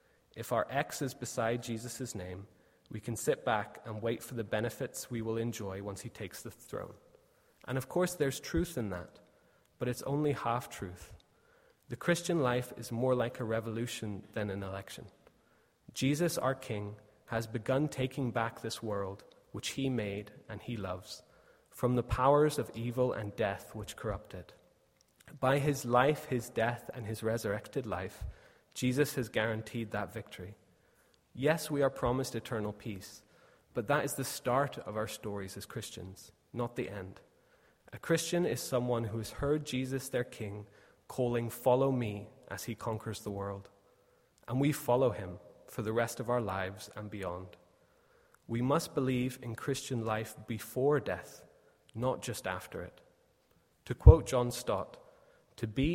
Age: 20-39